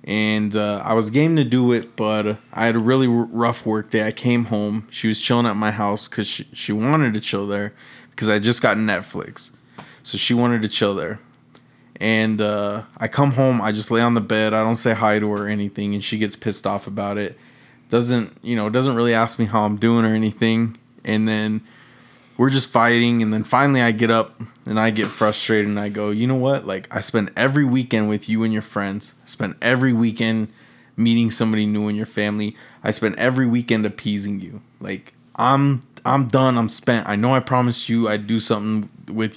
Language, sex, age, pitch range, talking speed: English, male, 20-39, 105-120 Hz, 220 wpm